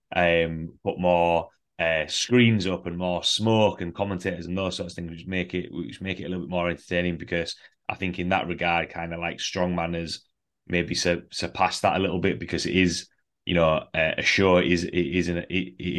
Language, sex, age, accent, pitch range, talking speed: English, male, 20-39, British, 85-95 Hz, 225 wpm